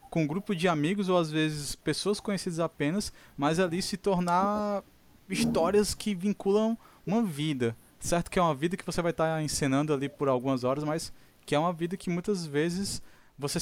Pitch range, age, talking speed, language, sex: 135-180 Hz, 20-39, 190 wpm, Portuguese, male